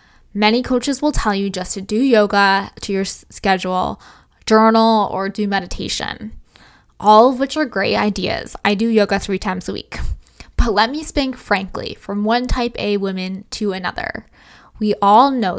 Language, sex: English, female